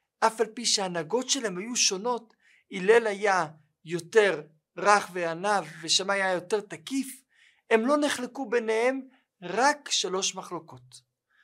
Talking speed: 120 wpm